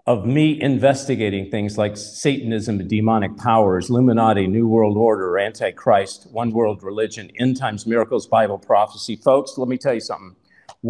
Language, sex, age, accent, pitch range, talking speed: English, male, 50-69, American, 90-115 Hz, 155 wpm